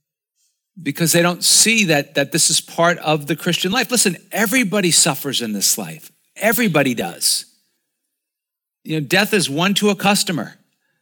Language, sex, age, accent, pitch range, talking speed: English, male, 50-69, American, 155-210 Hz, 160 wpm